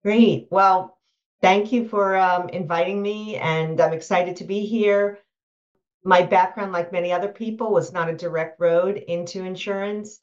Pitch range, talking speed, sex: 130-170 Hz, 160 wpm, female